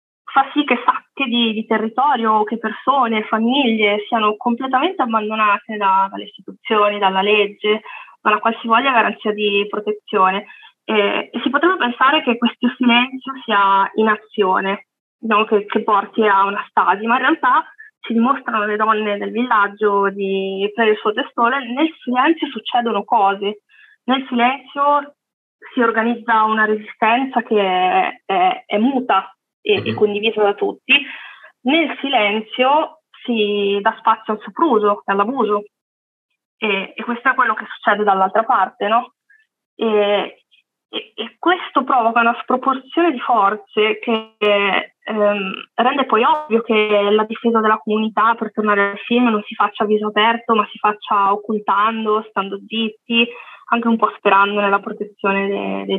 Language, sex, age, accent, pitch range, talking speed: Italian, female, 20-39, native, 205-245 Hz, 145 wpm